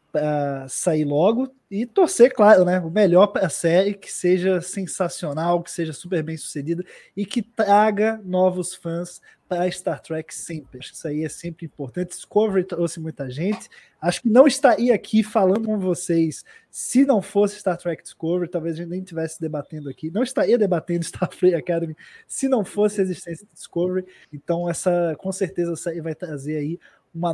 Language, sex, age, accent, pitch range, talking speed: Portuguese, male, 20-39, Brazilian, 165-225 Hz, 180 wpm